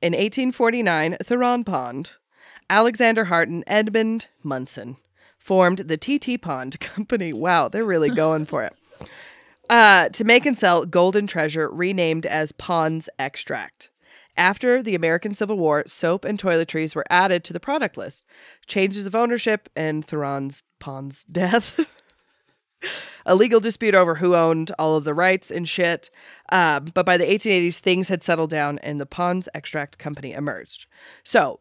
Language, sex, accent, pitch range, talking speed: English, female, American, 155-210 Hz, 150 wpm